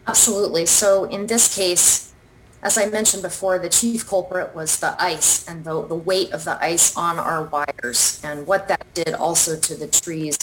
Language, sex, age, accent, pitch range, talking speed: English, female, 30-49, American, 150-185 Hz, 190 wpm